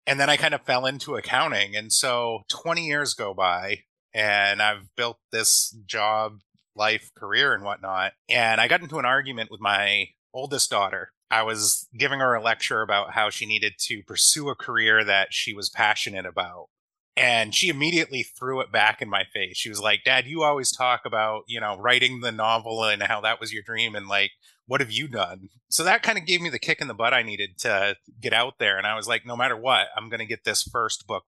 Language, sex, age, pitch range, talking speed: English, male, 30-49, 105-135 Hz, 225 wpm